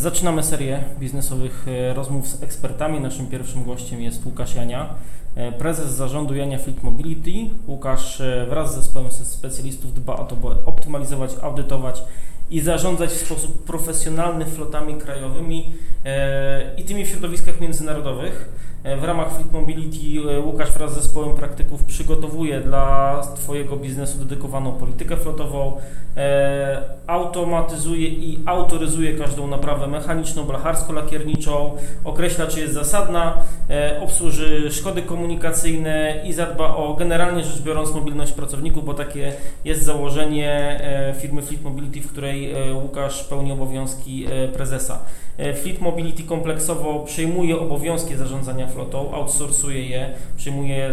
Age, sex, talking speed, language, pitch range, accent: 20-39, male, 125 wpm, Polish, 135-160 Hz, native